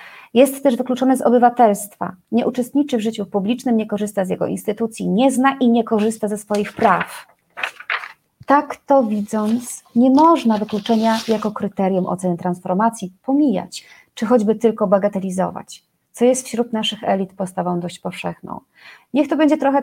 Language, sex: Polish, female